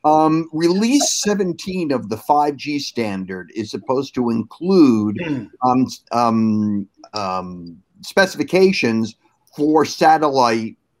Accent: American